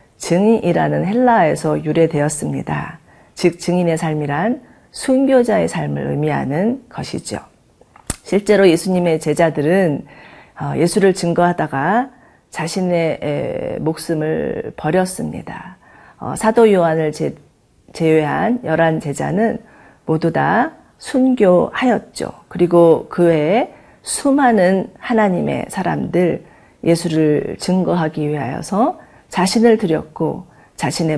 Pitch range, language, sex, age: 155-205 Hz, Korean, female, 40-59